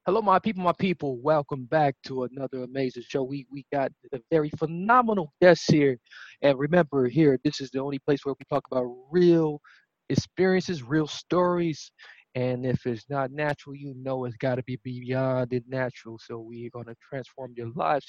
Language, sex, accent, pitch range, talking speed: English, male, American, 130-180 Hz, 185 wpm